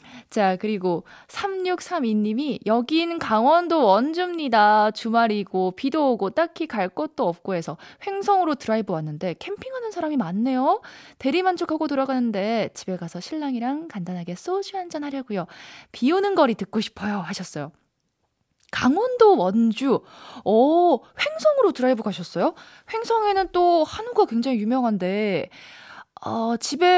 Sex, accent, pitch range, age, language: female, native, 205-335 Hz, 20-39, Korean